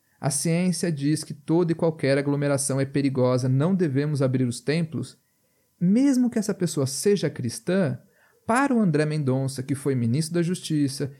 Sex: male